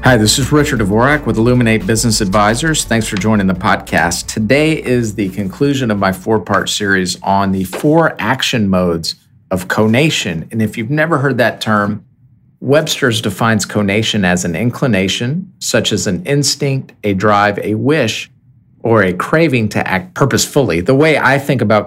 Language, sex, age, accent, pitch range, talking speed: English, male, 50-69, American, 100-125 Hz, 165 wpm